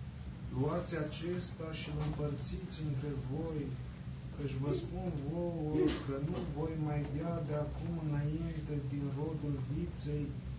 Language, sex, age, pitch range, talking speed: Romanian, male, 20-39, 135-160 Hz, 120 wpm